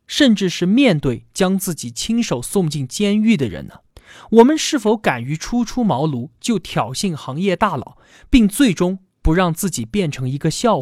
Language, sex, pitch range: Chinese, male, 140-220 Hz